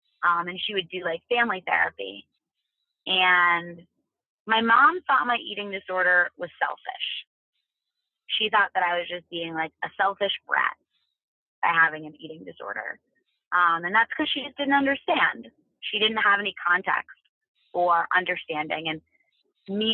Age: 30-49